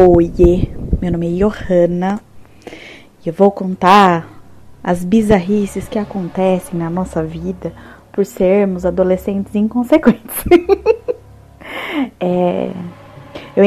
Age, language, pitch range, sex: 20-39, Portuguese, 185-230 Hz, female